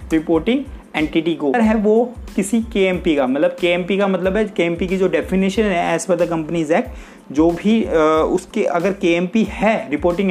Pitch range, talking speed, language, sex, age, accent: 170-220 Hz, 205 wpm, Hindi, male, 30-49, native